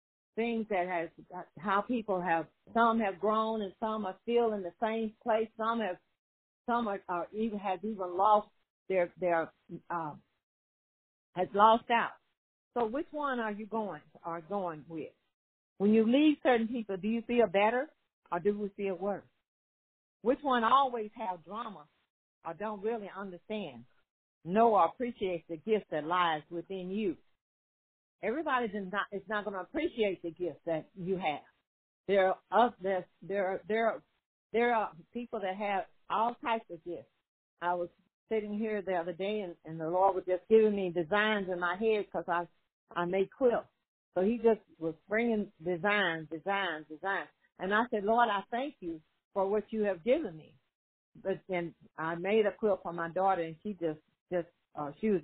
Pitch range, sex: 175-220 Hz, female